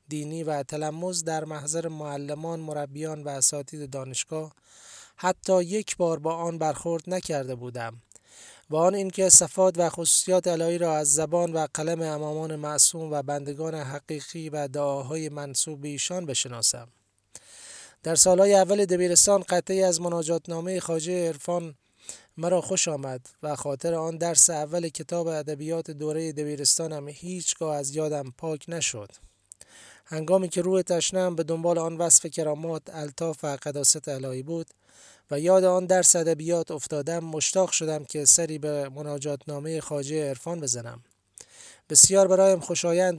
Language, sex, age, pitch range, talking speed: Persian, male, 20-39, 145-170 Hz, 140 wpm